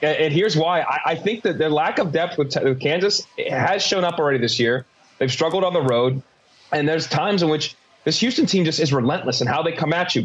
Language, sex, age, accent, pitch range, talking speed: English, male, 30-49, American, 145-180 Hz, 250 wpm